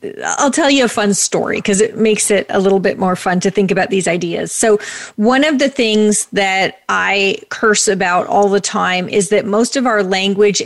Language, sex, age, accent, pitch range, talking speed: English, female, 30-49, American, 185-220 Hz, 215 wpm